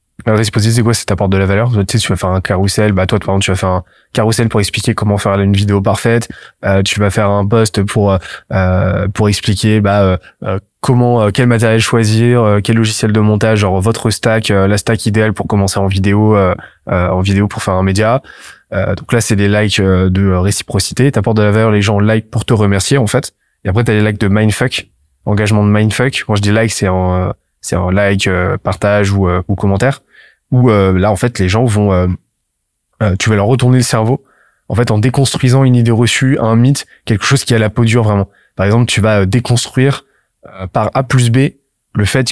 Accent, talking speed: French, 235 wpm